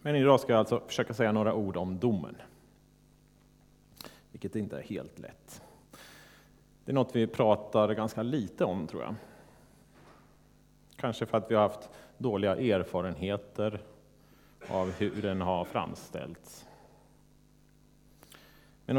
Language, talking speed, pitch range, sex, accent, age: Swedish, 125 wpm, 95-115 Hz, male, Norwegian, 30-49